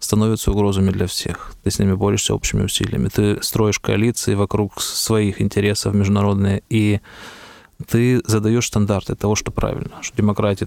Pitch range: 100-115 Hz